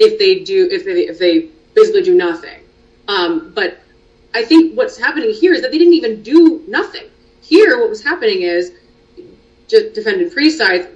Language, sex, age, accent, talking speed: English, female, 30-49, American, 175 wpm